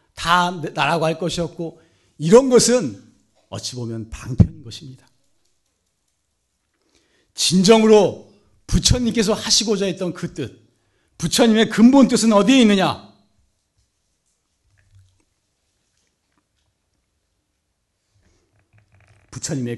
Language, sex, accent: Korean, male, native